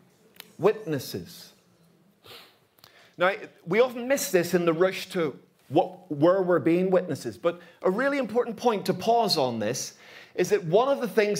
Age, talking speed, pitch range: 50-69, 160 wpm, 165-220 Hz